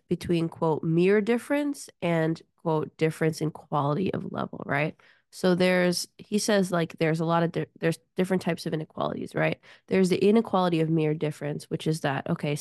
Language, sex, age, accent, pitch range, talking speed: English, female, 20-39, American, 155-185 Hz, 175 wpm